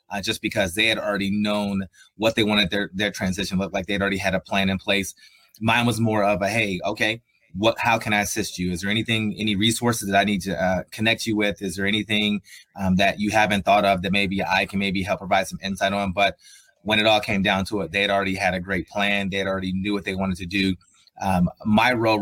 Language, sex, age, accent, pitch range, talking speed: English, male, 30-49, American, 95-110 Hz, 250 wpm